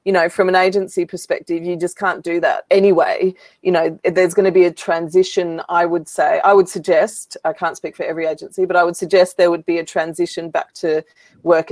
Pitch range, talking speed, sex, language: 170-200 Hz, 225 wpm, female, English